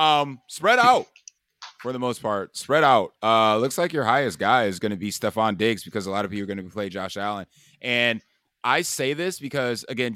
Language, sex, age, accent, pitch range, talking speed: English, male, 20-39, American, 110-135 Hz, 225 wpm